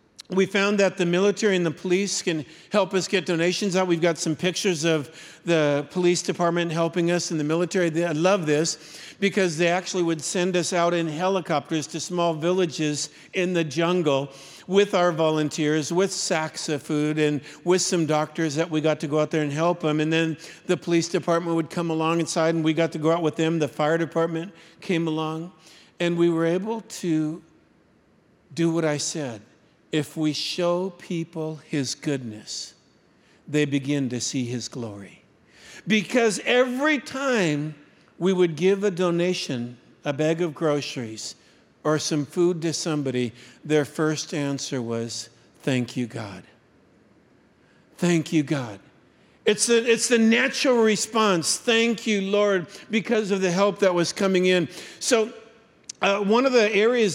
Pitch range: 155-195 Hz